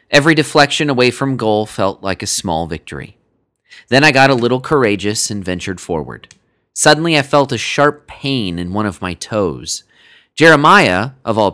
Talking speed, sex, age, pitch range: 170 wpm, male, 30-49, 110-155 Hz